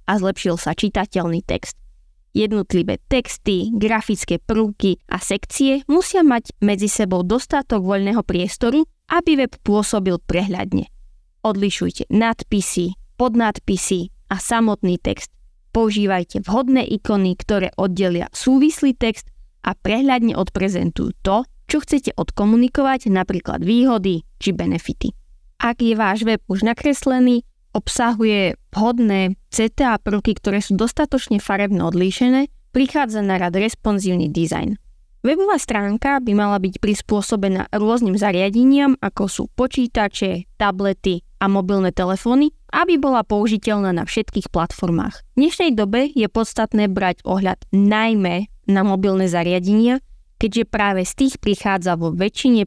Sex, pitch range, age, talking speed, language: female, 190-235 Hz, 20-39, 120 wpm, Slovak